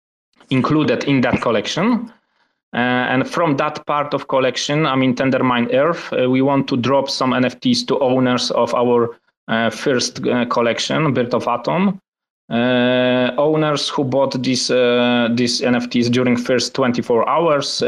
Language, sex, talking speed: English, male, 150 wpm